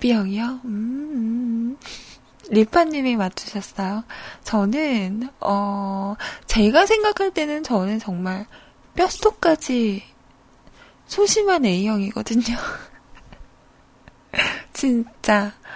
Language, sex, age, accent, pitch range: Korean, female, 20-39, native, 215-290 Hz